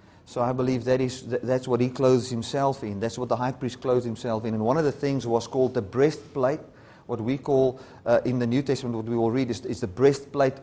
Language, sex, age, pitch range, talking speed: English, male, 40-59, 115-135 Hz, 250 wpm